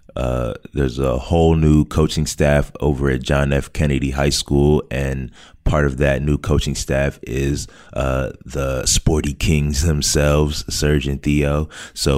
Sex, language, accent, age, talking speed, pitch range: male, English, American, 20-39, 155 wpm, 70-80 Hz